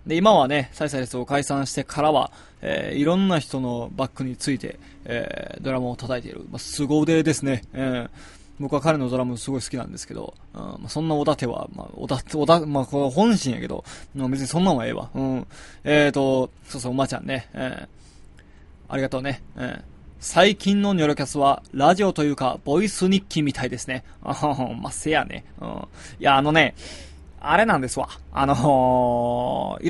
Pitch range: 130-160 Hz